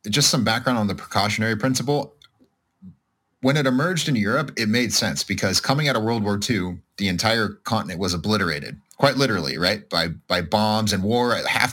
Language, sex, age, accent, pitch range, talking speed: English, male, 30-49, American, 100-130 Hz, 185 wpm